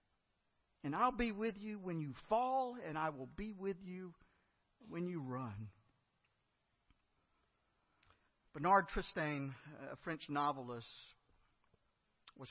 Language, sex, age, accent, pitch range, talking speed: English, male, 50-69, American, 130-195 Hz, 110 wpm